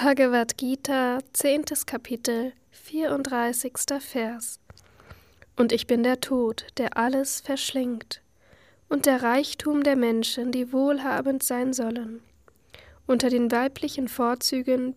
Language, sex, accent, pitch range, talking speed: German, female, German, 235-275 Hz, 110 wpm